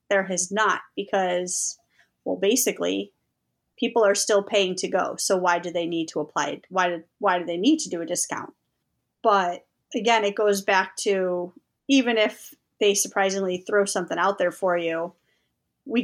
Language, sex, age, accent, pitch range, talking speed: English, female, 30-49, American, 185-225 Hz, 170 wpm